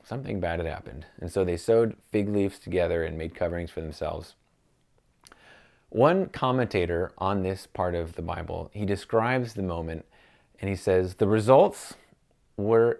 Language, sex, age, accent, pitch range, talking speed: English, male, 30-49, American, 85-105 Hz, 155 wpm